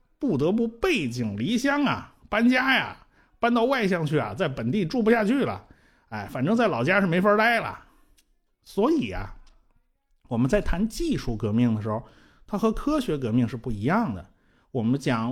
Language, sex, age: Chinese, male, 50-69